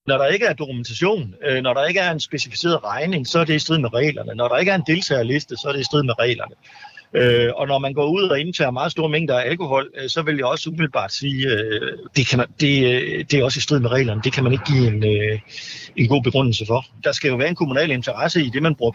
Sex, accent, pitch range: male, native, 130-165 Hz